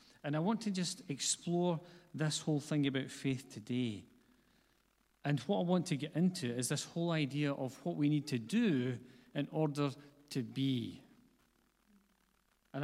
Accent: British